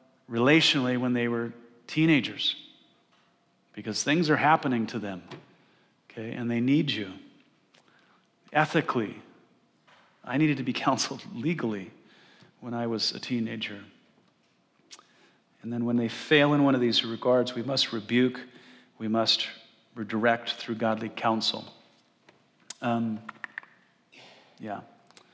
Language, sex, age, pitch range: English, male, 40-59, 115-130 Hz